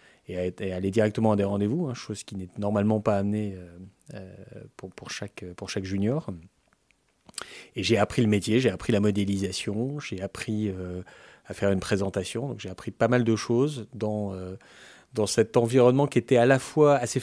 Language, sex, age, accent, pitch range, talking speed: French, male, 30-49, French, 95-115 Hz, 190 wpm